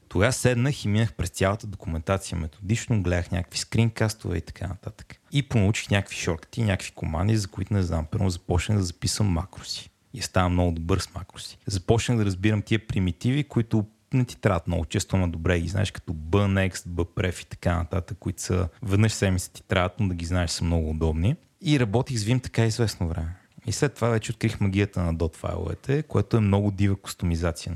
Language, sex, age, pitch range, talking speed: Bulgarian, male, 30-49, 85-110 Hz, 195 wpm